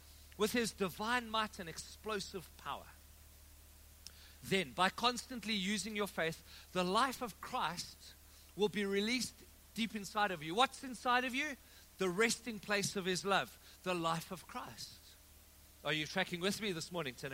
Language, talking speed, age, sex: English, 160 wpm, 50-69, male